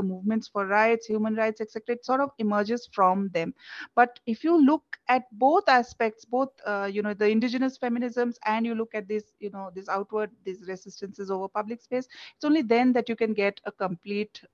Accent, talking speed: Indian, 200 wpm